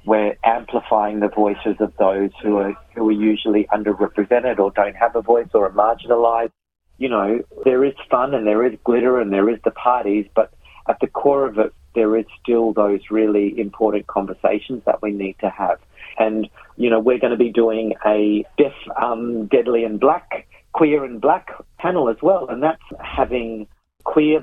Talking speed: 185 wpm